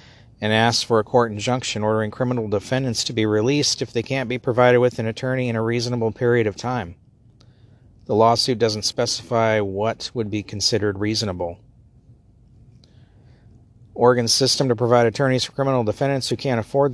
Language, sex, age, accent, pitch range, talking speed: English, male, 50-69, American, 110-130 Hz, 165 wpm